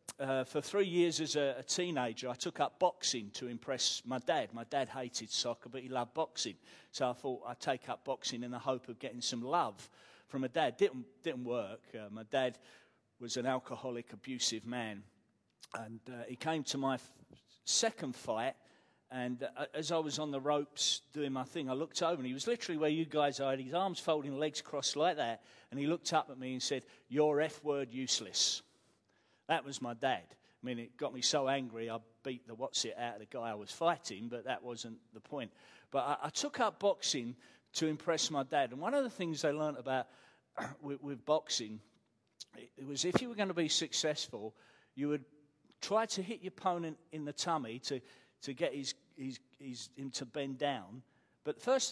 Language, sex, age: English, male, 40-59